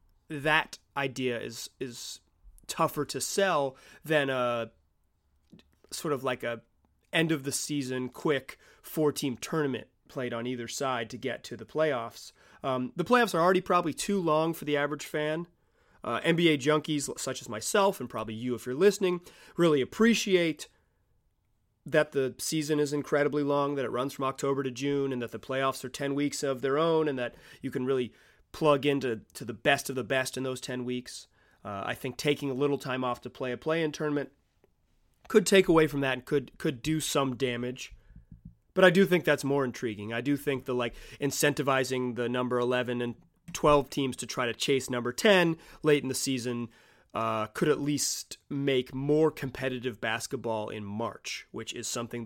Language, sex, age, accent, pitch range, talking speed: English, male, 30-49, American, 125-150 Hz, 180 wpm